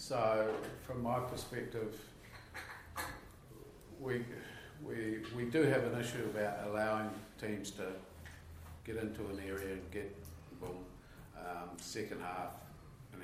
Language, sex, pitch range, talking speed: English, male, 90-110 Hz, 120 wpm